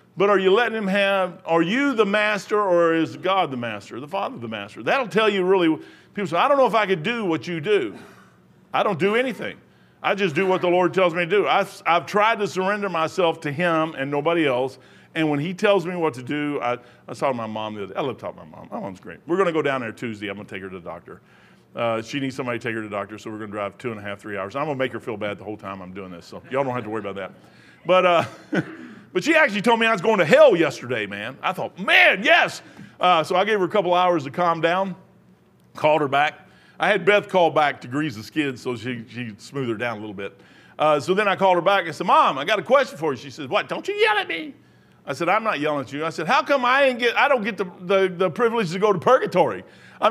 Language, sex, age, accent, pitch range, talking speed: English, male, 50-69, American, 140-220 Hz, 290 wpm